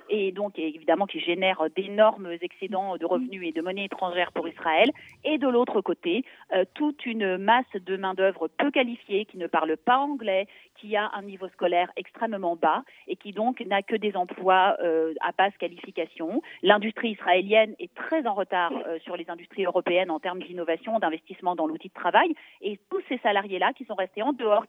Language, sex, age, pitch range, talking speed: Russian, female, 40-59, 180-245 Hz, 190 wpm